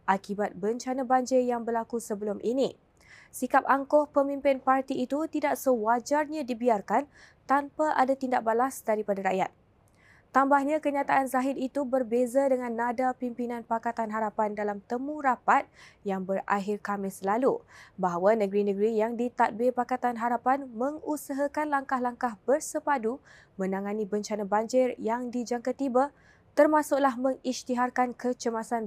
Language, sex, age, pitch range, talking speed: Malay, female, 20-39, 225-275 Hz, 115 wpm